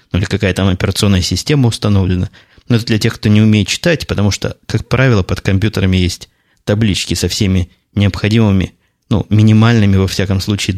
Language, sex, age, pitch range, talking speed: Russian, male, 20-39, 95-115 Hz, 175 wpm